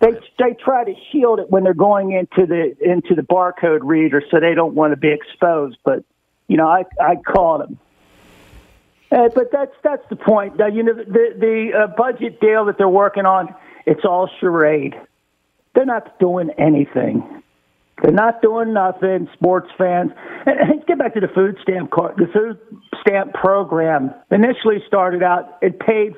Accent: American